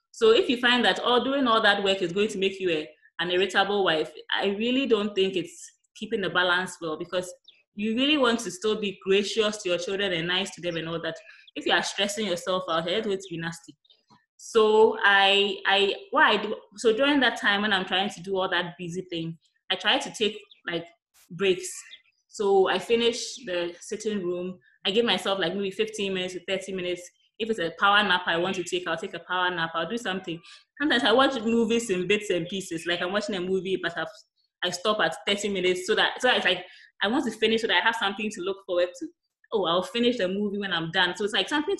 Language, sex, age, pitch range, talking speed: English, female, 20-39, 180-220 Hz, 240 wpm